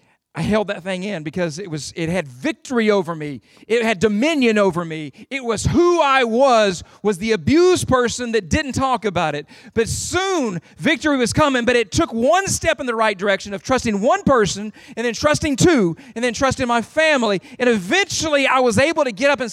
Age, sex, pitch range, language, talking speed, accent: 40-59, male, 175-270 Hz, English, 210 wpm, American